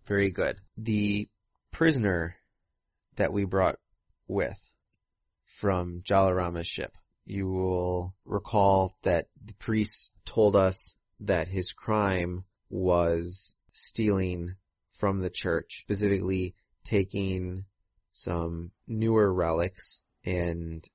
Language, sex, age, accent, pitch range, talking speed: English, male, 30-49, American, 90-100 Hz, 95 wpm